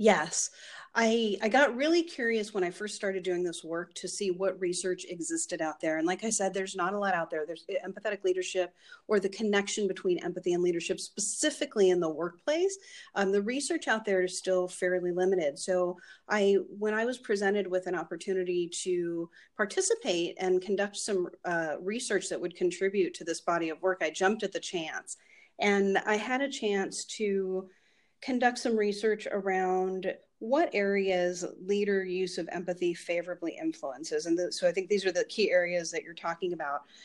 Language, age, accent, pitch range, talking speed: English, 40-59, American, 180-230 Hz, 185 wpm